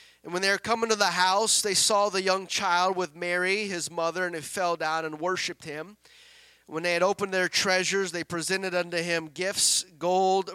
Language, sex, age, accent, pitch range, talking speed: English, male, 30-49, American, 165-215 Hz, 205 wpm